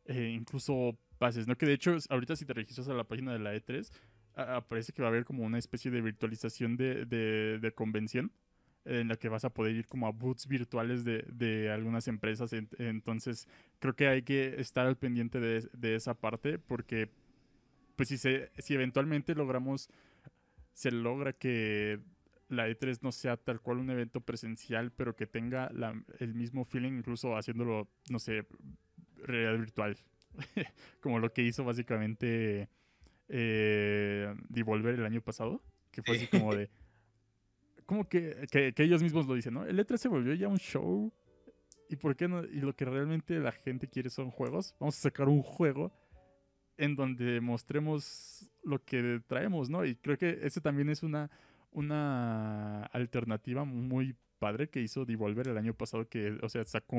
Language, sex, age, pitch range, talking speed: Spanish, male, 20-39, 115-135 Hz, 175 wpm